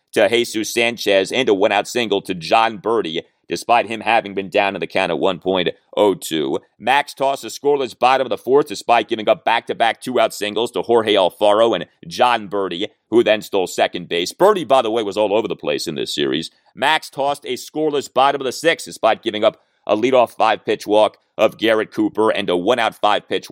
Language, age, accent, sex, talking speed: English, 40-59, American, male, 200 wpm